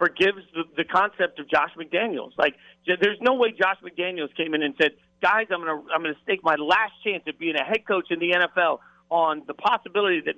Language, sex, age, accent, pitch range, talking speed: English, male, 40-59, American, 150-190 Hz, 215 wpm